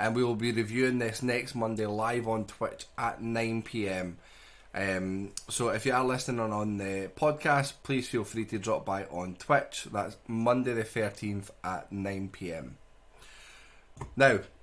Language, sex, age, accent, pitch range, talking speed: English, male, 10-29, British, 110-130 Hz, 150 wpm